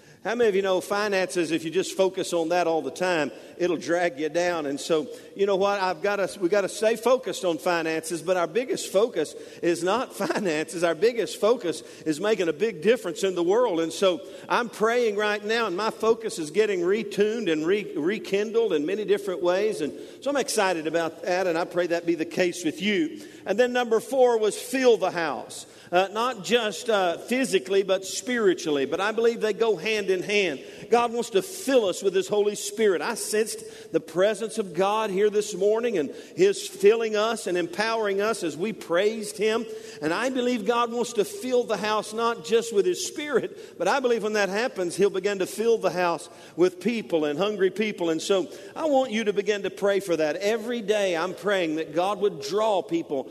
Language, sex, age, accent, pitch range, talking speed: English, male, 50-69, American, 180-230 Hz, 210 wpm